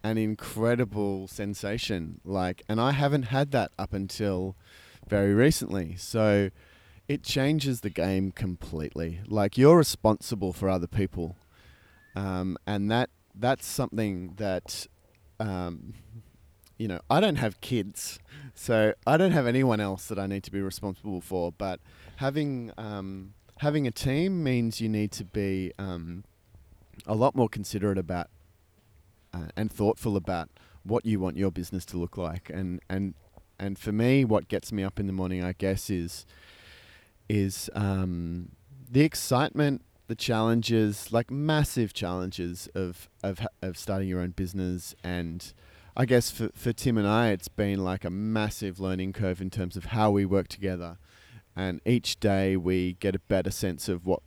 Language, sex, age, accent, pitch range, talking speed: English, male, 30-49, Australian, 90-115 Hz, 160 wpm